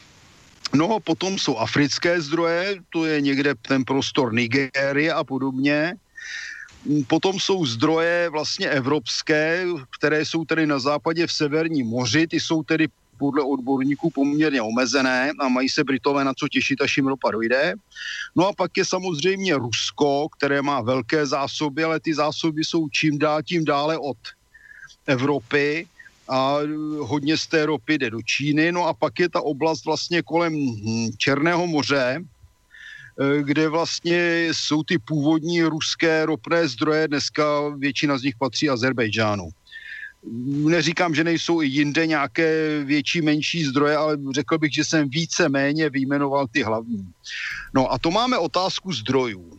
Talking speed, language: 145 wpm, Slovak